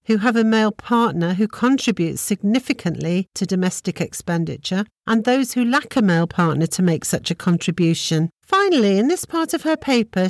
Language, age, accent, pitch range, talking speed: English, 50-69, British, 180-260 Hz, 175 wpm